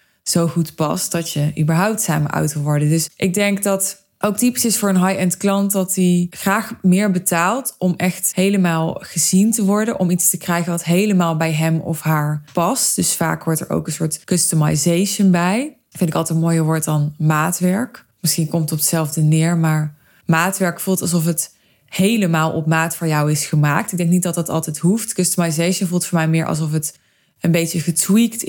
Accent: Dutch